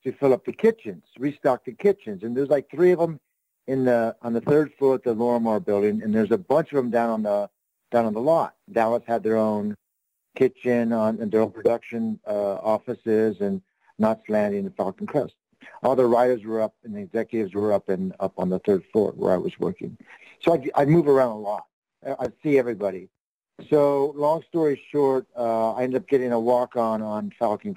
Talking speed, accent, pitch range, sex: 210 wpm, American, 110-145 Hz, male